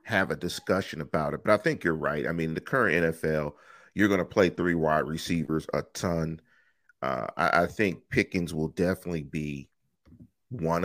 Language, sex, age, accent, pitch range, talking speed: English, male, 40-59, American, 80-95 Hz, 185 wpm